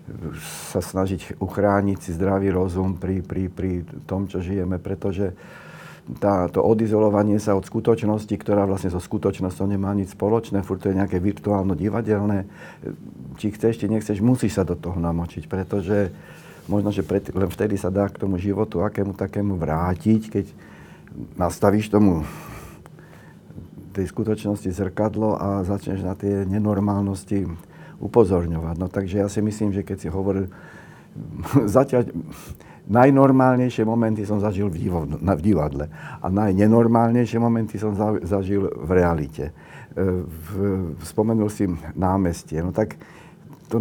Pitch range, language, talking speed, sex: 95-110 Hz, Slovak, 135 wpm, male